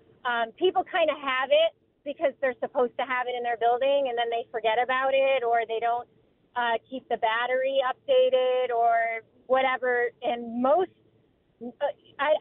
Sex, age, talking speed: female, 30-49, 170 wpm